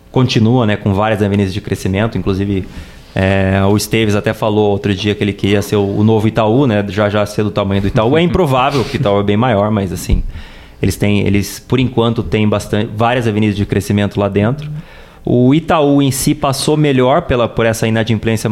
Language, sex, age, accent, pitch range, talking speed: English, male, 20-39, Brazilian, 100-120 Hz, 205 wpm